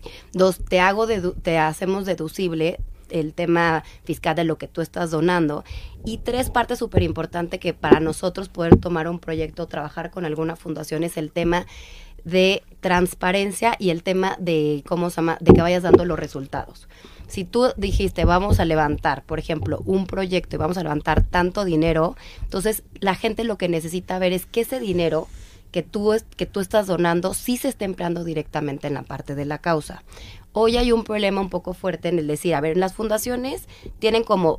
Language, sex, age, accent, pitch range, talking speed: Spanish, female, 20-39, Mexican, 160-195 Hz, 185 wpm